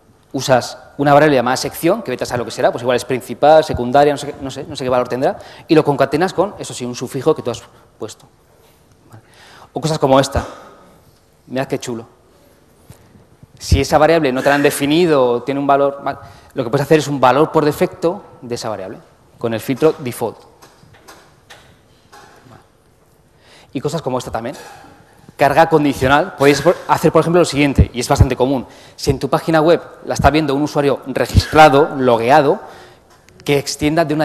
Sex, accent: male, Spanish